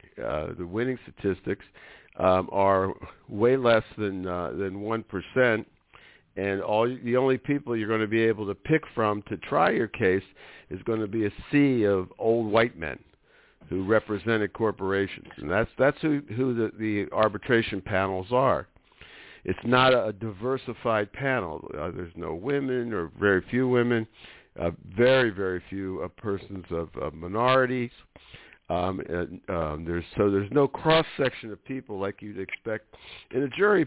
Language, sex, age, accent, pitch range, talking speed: English, male, 60-79, American, 95-120 Hz, 160 wpm